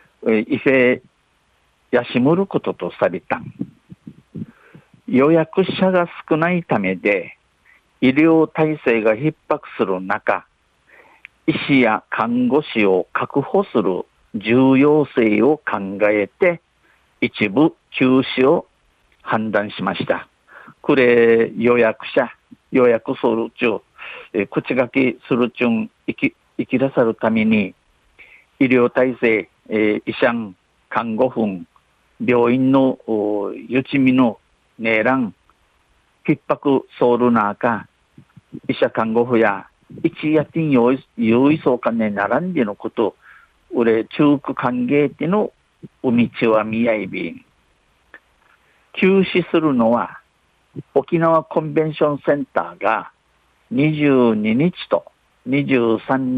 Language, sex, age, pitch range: Japanese, male, 50-69, 110-150 Hz